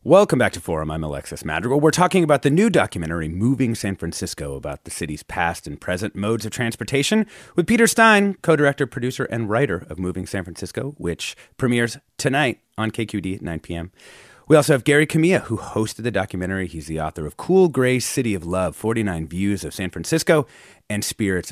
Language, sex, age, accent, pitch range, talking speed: English, male, 30-49, American, 85-140 Hz, 190 wpm